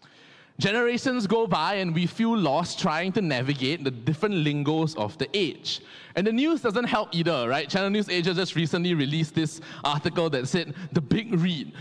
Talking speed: 185 wpm